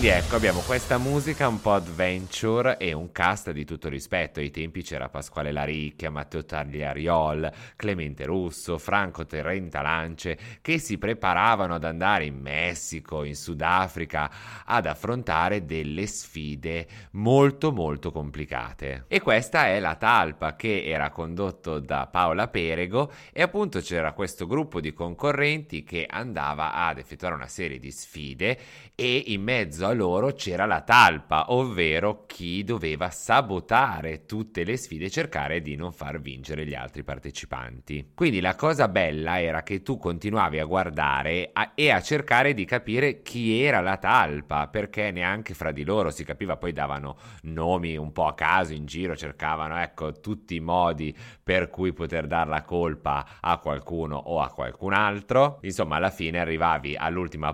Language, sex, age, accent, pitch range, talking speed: Italian, male, 30-49, native, 75-105 Hz, 155 wpm